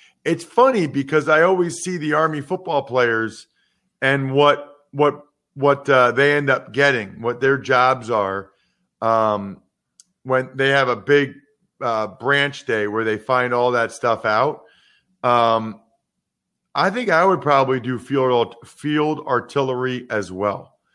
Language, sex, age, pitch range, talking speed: English, male, 40-59, 130-190 Hz, 145 wpm